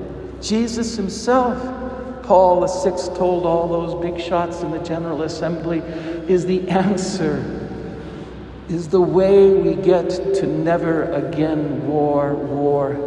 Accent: American